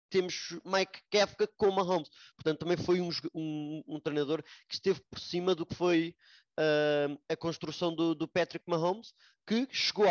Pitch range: 145-165 Hz